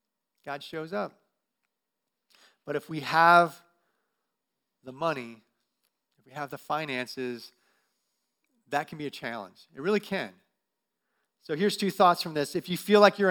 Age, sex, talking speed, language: 40-59, male, 150 wpm, English